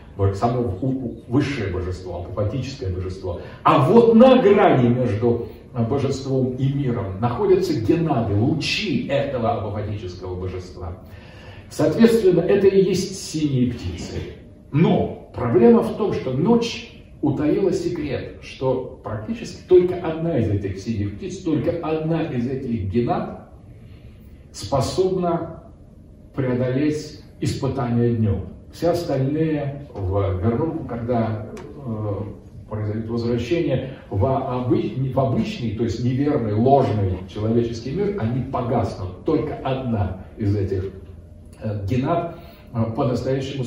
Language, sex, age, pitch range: Russian, male, 40-59, 105-135 Hz